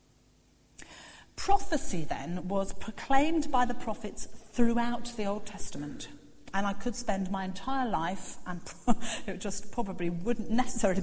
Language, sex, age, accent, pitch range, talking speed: English, female, 40-59, British, 205-295 Hz, 130 wpm